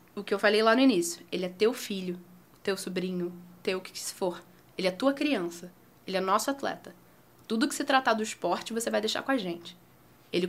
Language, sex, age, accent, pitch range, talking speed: Portuguese, female, 10-29, Brazilian, 200-260 Hz, 225 wpm